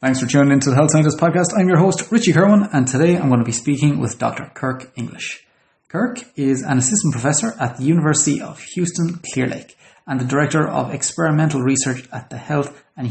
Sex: male